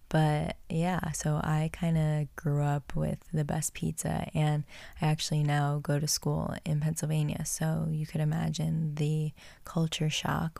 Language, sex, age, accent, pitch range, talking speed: English, female, 20-39, American, 150-165 Hz, 160 wpm